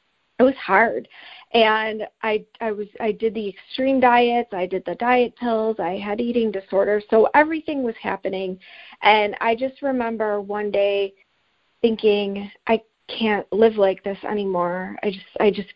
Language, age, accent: English, 40-59, American